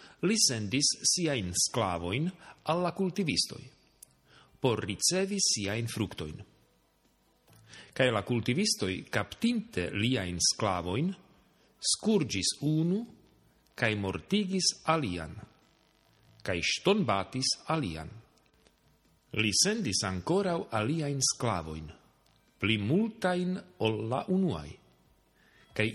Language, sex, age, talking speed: Slovak, male, 50-69, 75 wpm